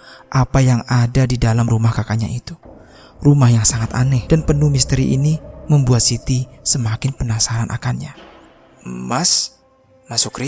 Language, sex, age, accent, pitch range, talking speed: Indonesian, male, 20-39, native, 110-130 Hz, 130 wpm